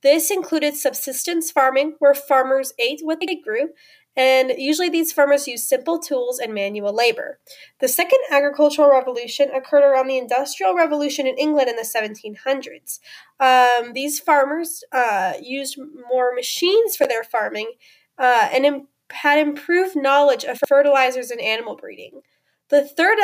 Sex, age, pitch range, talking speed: female, 10-29, 255-310 Hz, 140 wpm